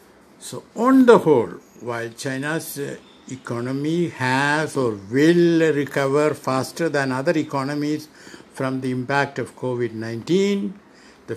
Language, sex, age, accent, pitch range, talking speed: English, male, 60-79, Indian, 115-150 Hz, 110 wpm